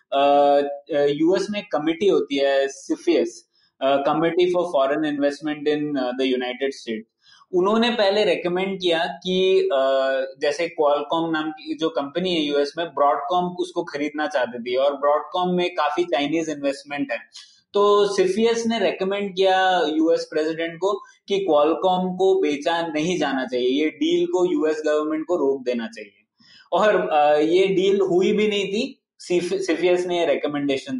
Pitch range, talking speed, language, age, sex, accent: 145-195 Hz, 150 wpm, Hindi, 20-39, male, native